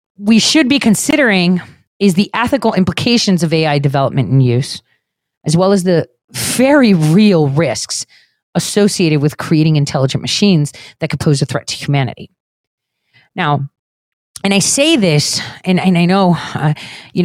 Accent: American